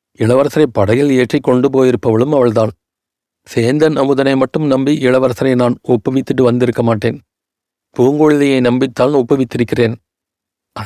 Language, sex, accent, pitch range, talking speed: Tamil, male, native, 120-150 Hz, 100 wpm